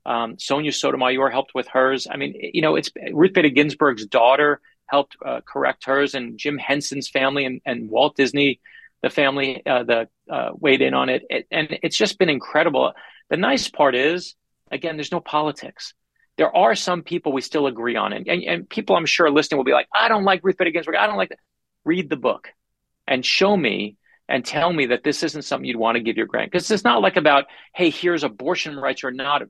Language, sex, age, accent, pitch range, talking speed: English, male, 40-59, American, 130-170 Hz, 220 wpm